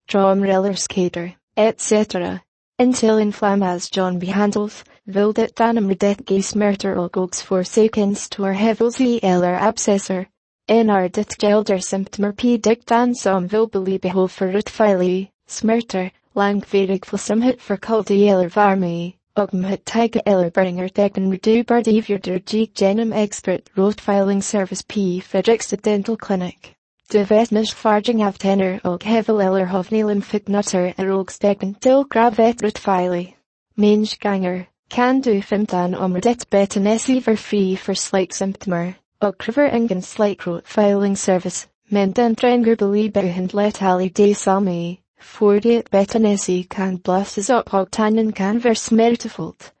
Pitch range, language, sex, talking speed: 190-220 Hz, English, female, 135 wpm